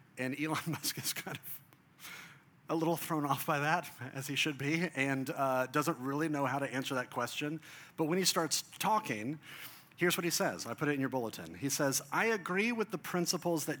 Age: 40-59